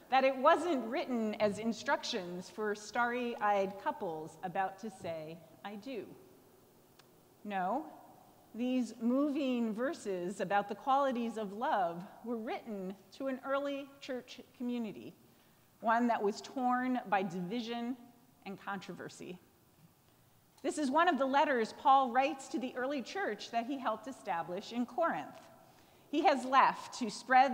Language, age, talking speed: English, 40-59, 135 wpm